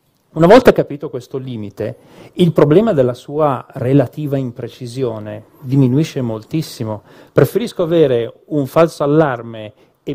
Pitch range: 115-150 Hz